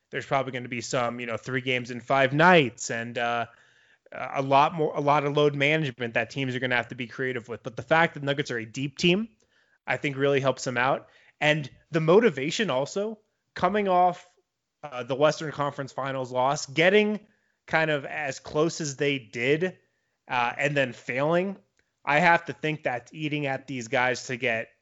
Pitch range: 125-150 Hz